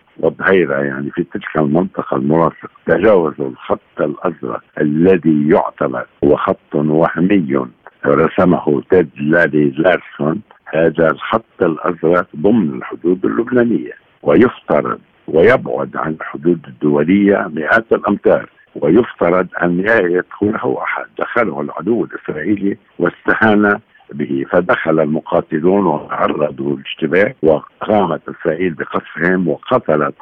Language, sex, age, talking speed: Arabic, male, 60-79, 95 wpm